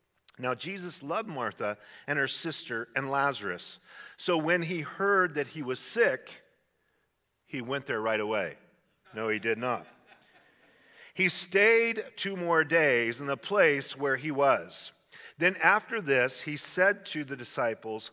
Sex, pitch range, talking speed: male, 130-180 Hz, 150 wpm